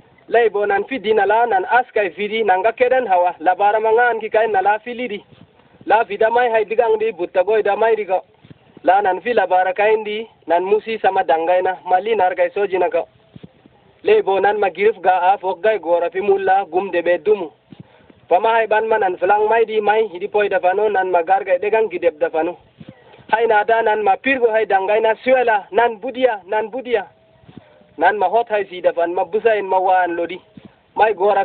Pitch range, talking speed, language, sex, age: 185-230 Hz, 165 wpm, Arabic, male, 30-49